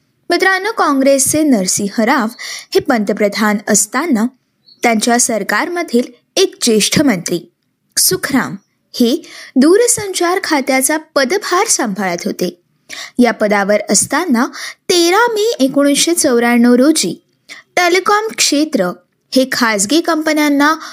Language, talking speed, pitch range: Marathi, 80 wpm, 240-330 Hz